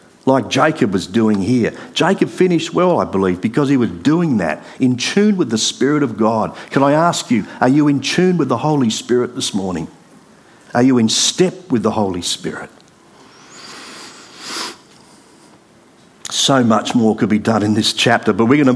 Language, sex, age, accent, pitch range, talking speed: English, male, 50-69, Australian, 120-175 Hz, 180 wpm